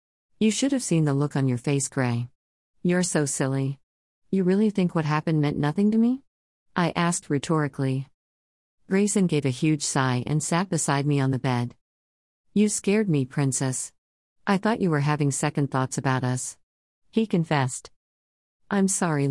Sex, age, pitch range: female, 40-59, 130-165 Hz